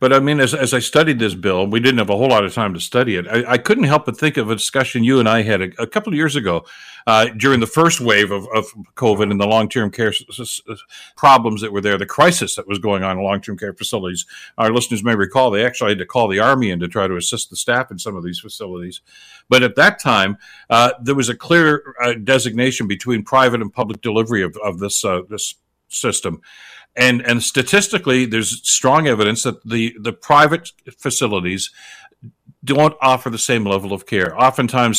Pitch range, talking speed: 105-130 Hz, 225 wpm